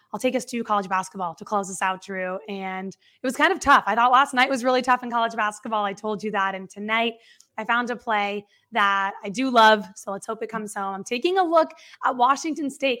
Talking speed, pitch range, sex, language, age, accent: 250 wpm, 205-240 Hz, female, English, 20-39, American